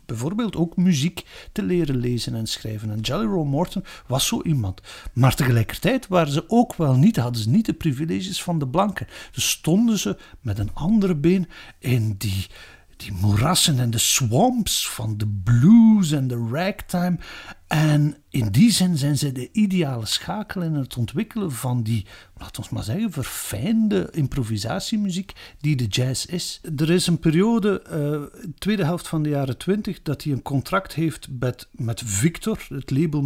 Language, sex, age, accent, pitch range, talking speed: Dutch, male, 50-69, Dutch, 120-175 Hz, 175 wpm